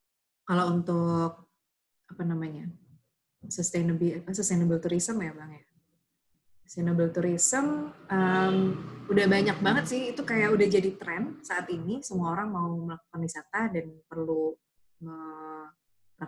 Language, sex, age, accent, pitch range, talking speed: Indonesian, female, 20-39, native, 165-190 Hz, 120 wpm